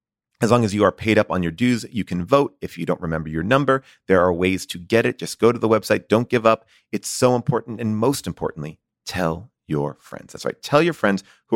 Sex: male